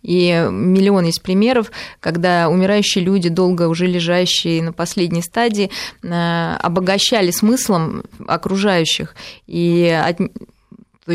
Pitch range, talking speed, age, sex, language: 170-205 Hz, 100 wpm, 20-39, female, Russian